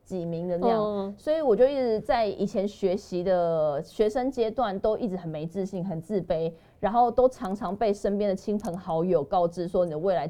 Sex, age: female, 20-39